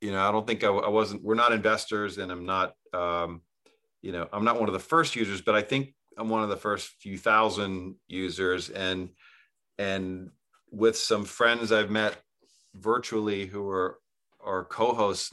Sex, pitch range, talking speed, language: male, 95-110 Hz, 185 wpm, English